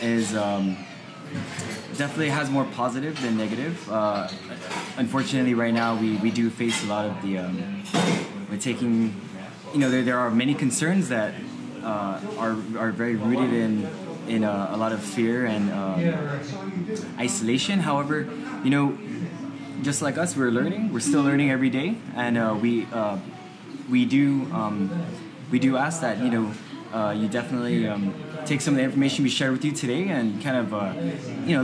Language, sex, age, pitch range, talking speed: English, male, 20-39, 110-140 Hz, 175 wpm